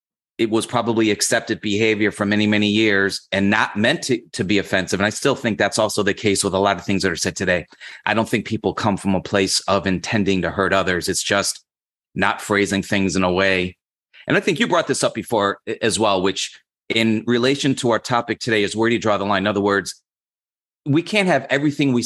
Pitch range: 95-120 Hz